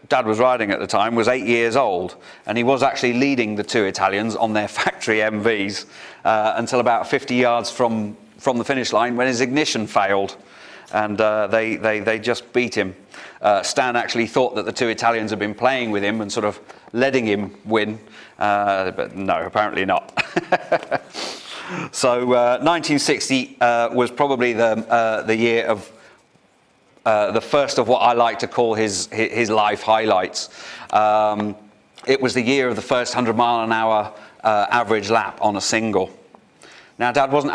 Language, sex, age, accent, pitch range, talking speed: English, male, 40-59, British, 105-125 Hz, 180 wpm